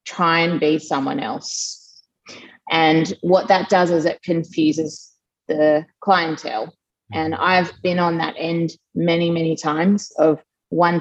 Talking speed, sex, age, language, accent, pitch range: 135 wpm, female, 30-49, English, Australian, 155-180 Hz